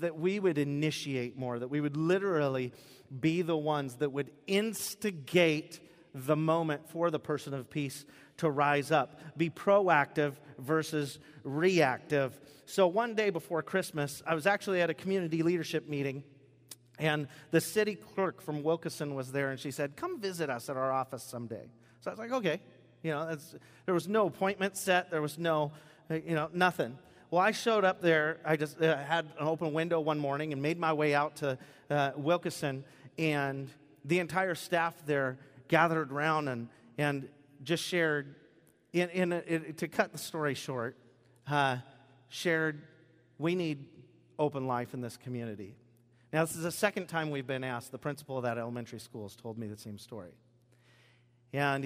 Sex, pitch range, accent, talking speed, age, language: male, 135-165 Hz, American, 175 wpm, 40-59, English